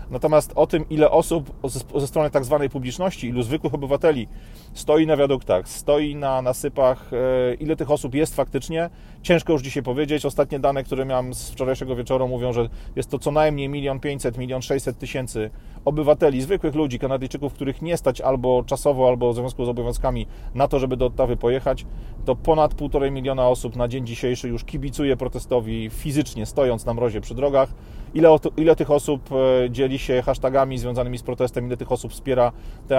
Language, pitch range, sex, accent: Polish, 125-145 Hz, male, native